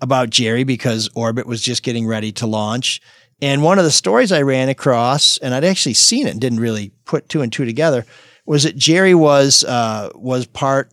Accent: American